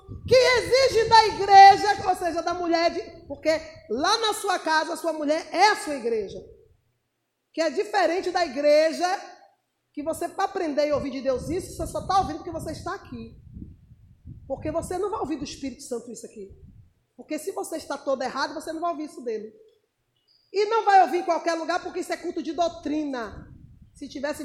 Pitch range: 280-390 Hz